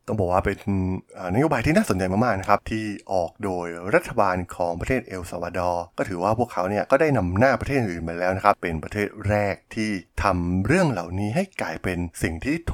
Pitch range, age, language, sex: 90-115 Hz, 20-39, Thai, male